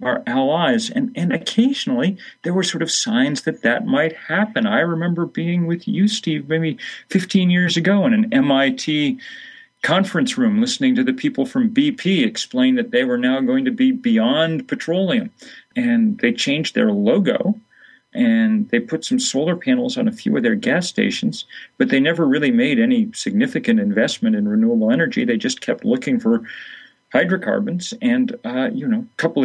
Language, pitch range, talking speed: English, 200-250 Hz, 175 wpm